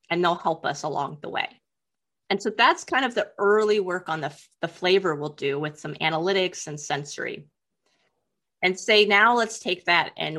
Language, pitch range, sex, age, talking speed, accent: English, 160-205 Hz, female, 30-49, 190 wpm, American